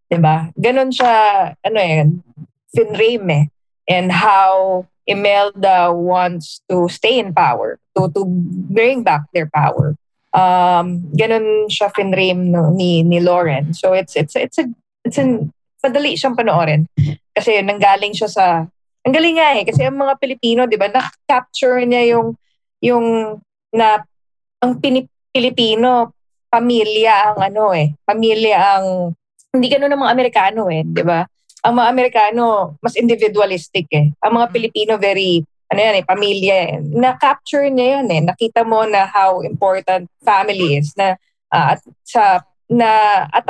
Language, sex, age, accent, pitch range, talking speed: English, female, 20-39, Filipino, 180-235 Hz, 145 wpm